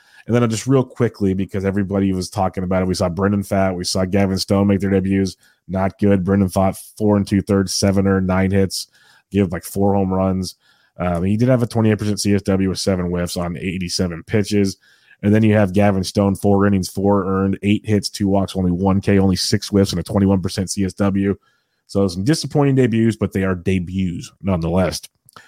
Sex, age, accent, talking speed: male, 30-49, American, 200 wpm